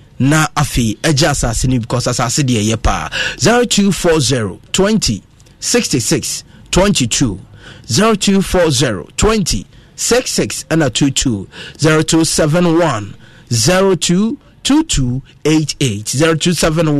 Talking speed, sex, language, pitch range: 55 wpm, male, English, 125-180 Hz